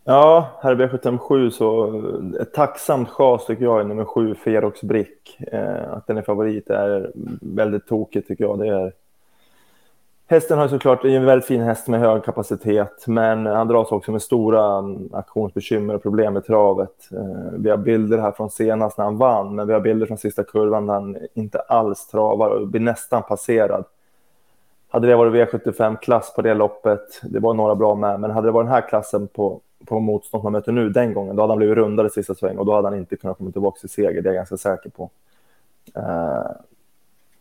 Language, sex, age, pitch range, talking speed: Swedish, male, 20-39, 105-115 Hz, 205 wpm